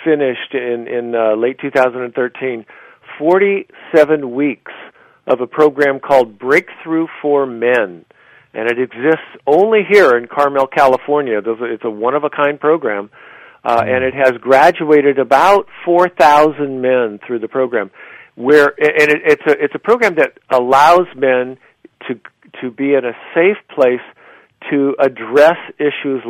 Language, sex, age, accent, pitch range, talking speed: English, male, 50-69, American, 120-150 Hz, 140 wpm